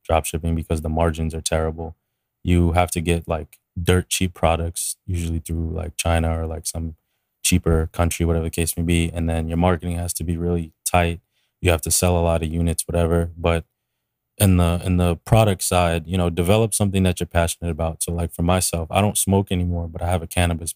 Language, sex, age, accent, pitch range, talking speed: English, male, 20-39, American, 80-90 Hz, 215 wpm